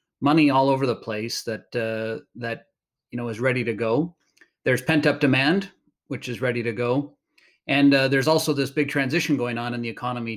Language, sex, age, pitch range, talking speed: English, male, 30-49, 120-145 Hz, 195 wpm